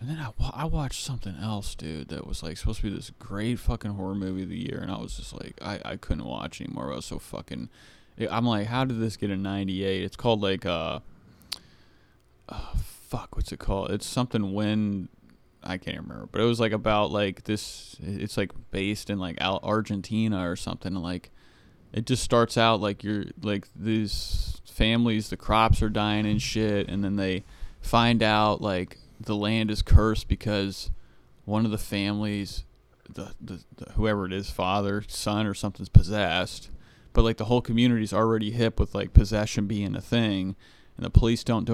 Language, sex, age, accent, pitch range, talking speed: English, male, 20-39, American, 100-115 Hz, 195 wpm